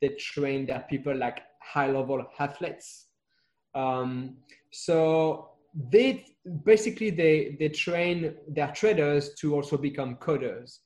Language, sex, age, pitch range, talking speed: English, male, 20-39, 145-175 Hz, 115 wpm